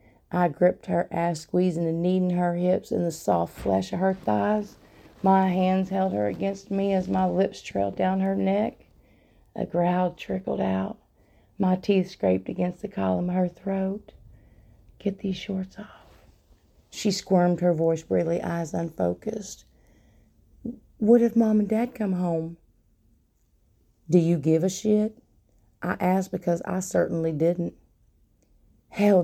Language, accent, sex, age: English, American, female, 40-59